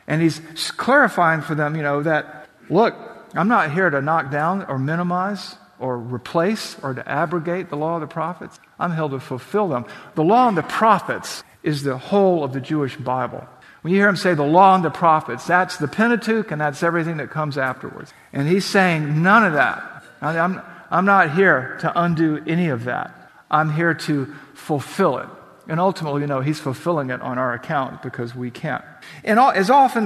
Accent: American